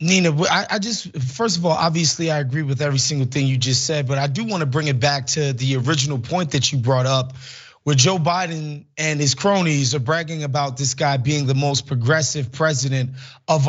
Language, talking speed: English, 215 wpm